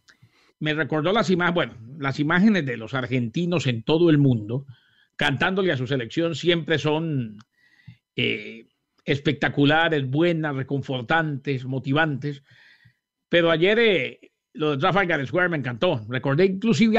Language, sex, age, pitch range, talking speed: English, male, 50-69, 140-180 Hz, 125 wpm